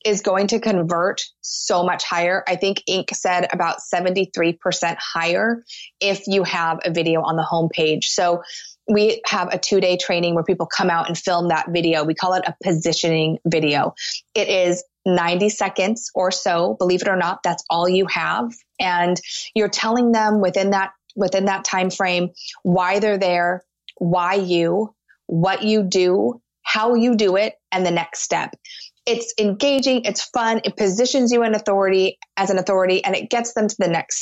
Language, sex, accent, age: English, female, American, 20-39